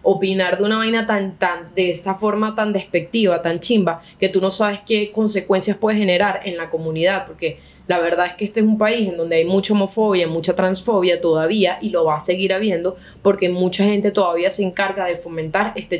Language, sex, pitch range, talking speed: Spanish, female, 185-230 Hz, 210 wpm